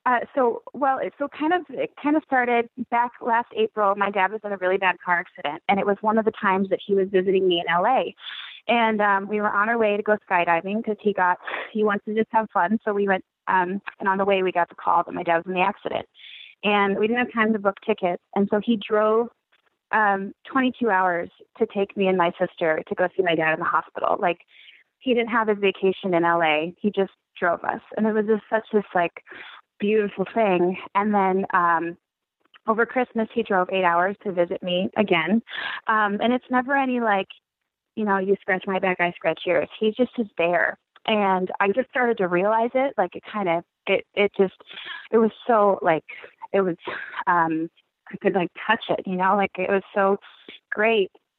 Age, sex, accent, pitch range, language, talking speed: 20-39, female, American, 185-225 Hz, English, 220 wpm